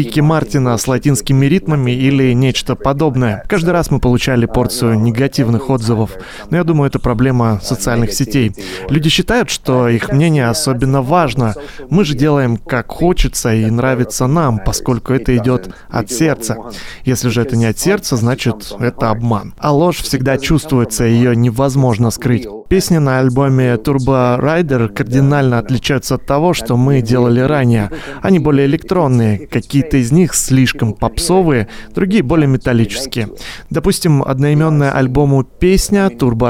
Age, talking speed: 20-39, 140 wpm